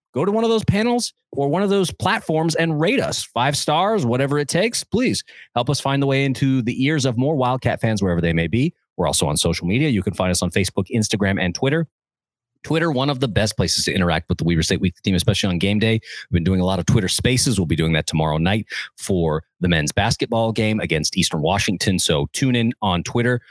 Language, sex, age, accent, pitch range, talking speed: English, male, 30-49, American, 95-140 Hz, 240 wpm